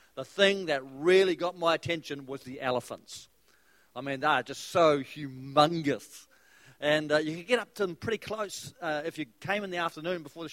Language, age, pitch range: English, 50-69, 150-200 Hz